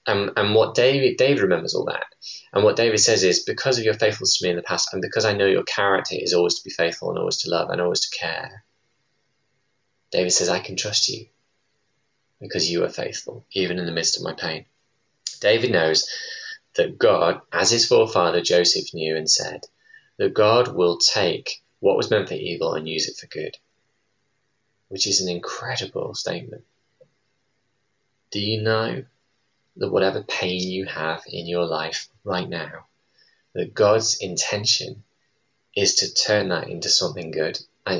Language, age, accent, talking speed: English, 20-39, British, 175 wpm